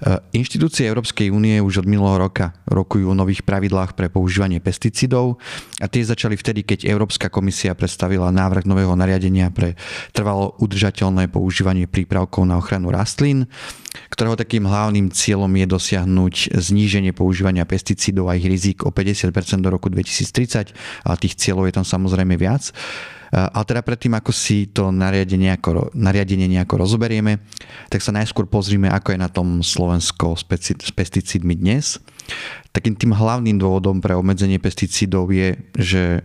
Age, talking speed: 30-49, 145 wpm